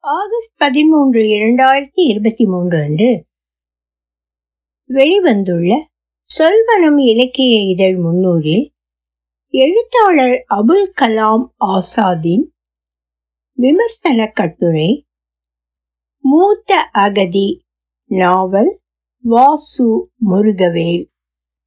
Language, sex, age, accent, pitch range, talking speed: Tamil, female, 60-79, native, 185-290 Hz, 60 wpm